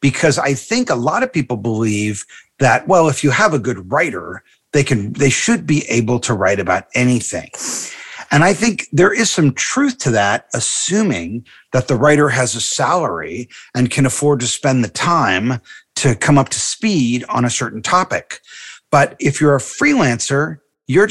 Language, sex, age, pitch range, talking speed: English, male, 40-59, 120-150 Hz, 180 wpm